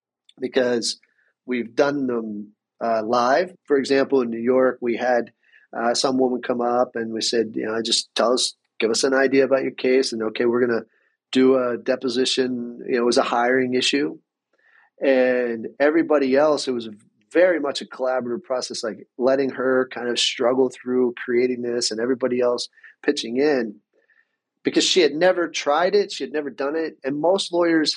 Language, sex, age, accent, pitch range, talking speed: English, male, 30-49, American, 120-135 Hz, 185 wpm